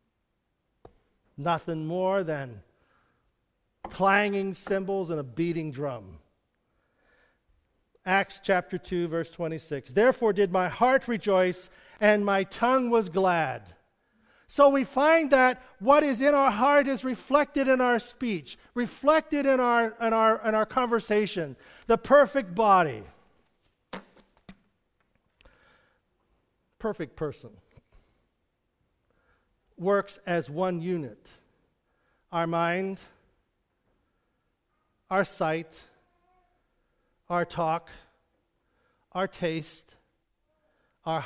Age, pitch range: 50-69, 155-225 Hz